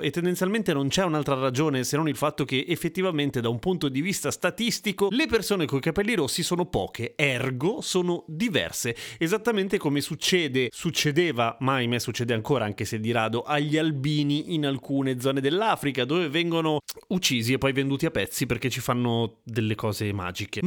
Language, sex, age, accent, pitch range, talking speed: Italian, male, 30-49, native, 130-175 Hz, 175 wpm